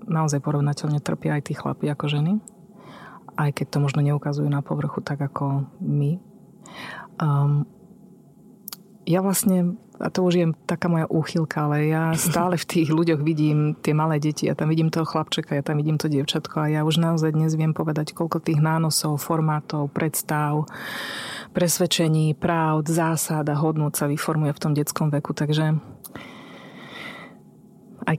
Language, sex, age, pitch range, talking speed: Slovak, female, 30-49, 150-175 Hz, 150 wpm